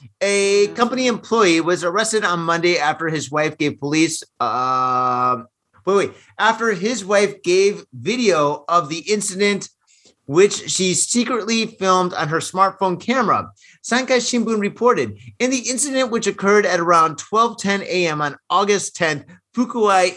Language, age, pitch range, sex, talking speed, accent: English, 30-49, 165-215 Hz, male, 140 wpm, American